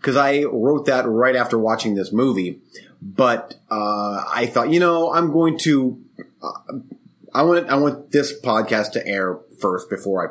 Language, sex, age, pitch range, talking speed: English, male, 30-49, 105-140 Hz, 175 wpm